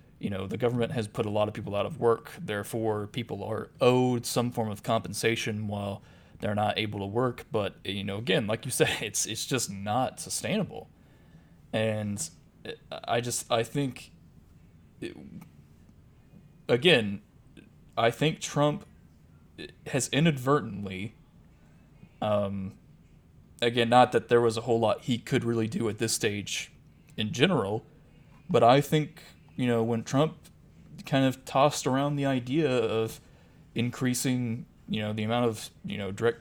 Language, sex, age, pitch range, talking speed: English, male, 20-39, 105-125 Hz, 150 wpm